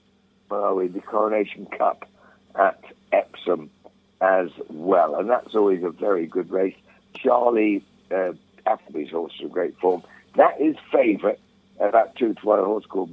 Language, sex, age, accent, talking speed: English, male, 60-79, British, 150 wpm